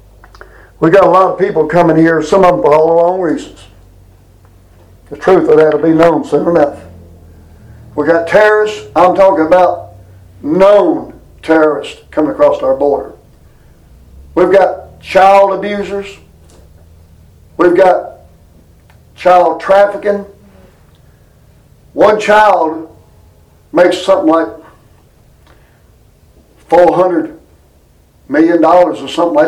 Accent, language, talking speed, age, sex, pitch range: American, English, 110 wpm, 60-79, male, 150-200 Hz